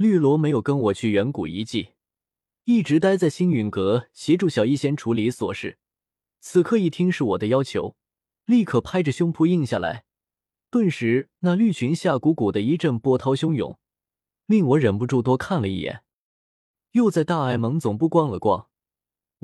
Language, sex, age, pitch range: Chinese, male, 20-39, 120-170 Hz